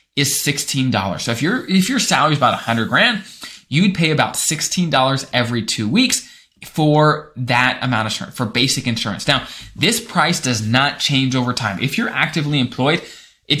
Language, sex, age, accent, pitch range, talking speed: English, male, 20-39, American, 125-170 Hz, 180 wpm